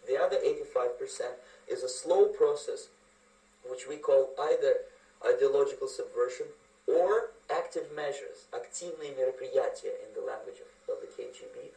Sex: male